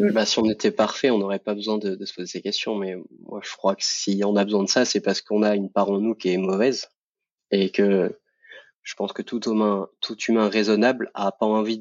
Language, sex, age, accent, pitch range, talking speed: French, male, 20-39, French, 100-115 Hz, 255 wpm